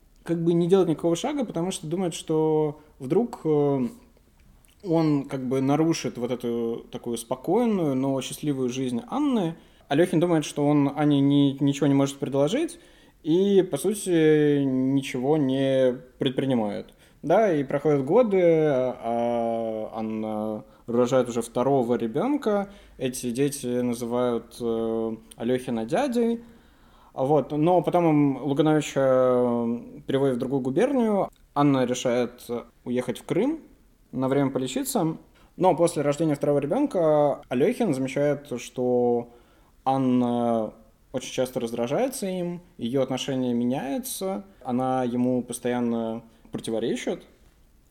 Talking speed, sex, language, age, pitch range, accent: 110 wpm, male, Russian, 20-39, 125-165 Hz, native